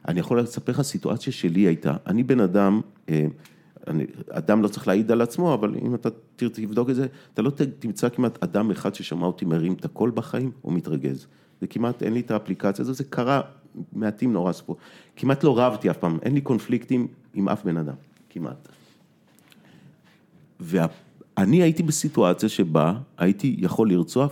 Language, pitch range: Hebrew, 85-130 Hz